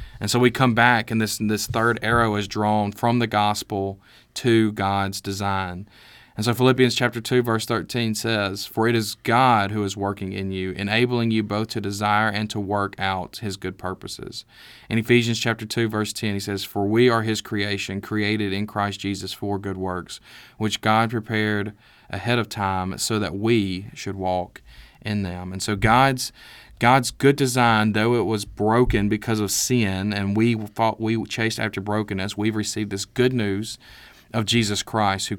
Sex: male